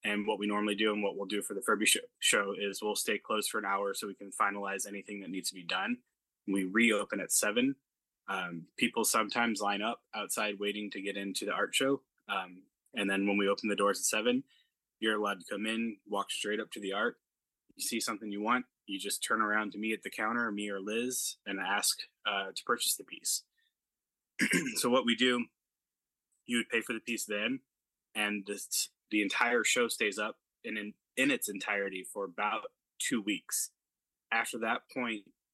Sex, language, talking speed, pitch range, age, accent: male, English, 205 wpm, 100-115 Hz, 20-39, American